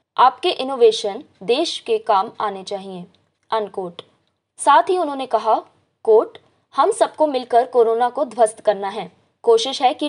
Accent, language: native, Hindi